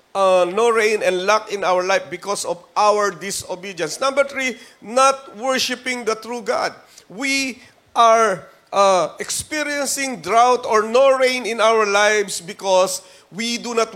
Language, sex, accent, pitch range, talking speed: Filipino, male, native, 205-245 Hz, 145 wpm